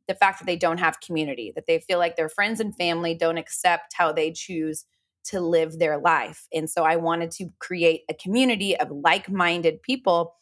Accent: American